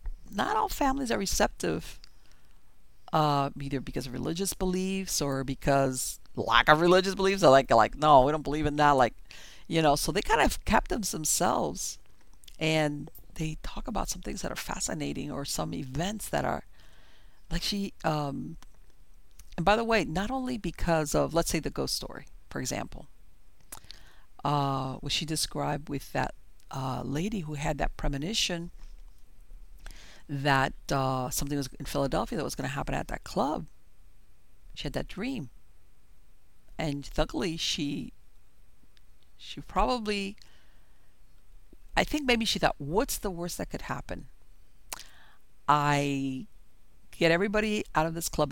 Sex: female